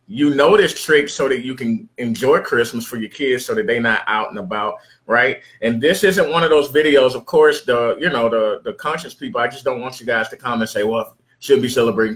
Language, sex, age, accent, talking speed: English, male, 30-49, American, 255 wpm